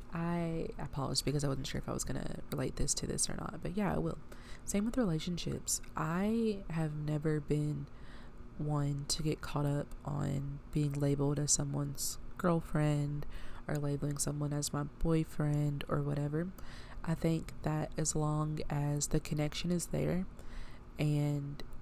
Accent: American